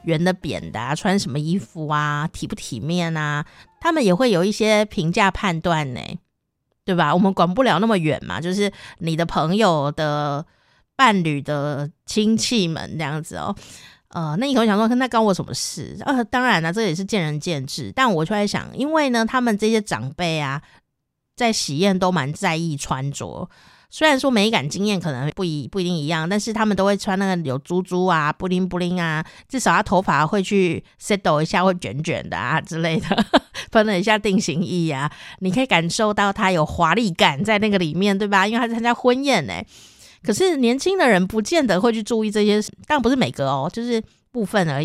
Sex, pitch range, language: female, 160-220 Hz, Chinese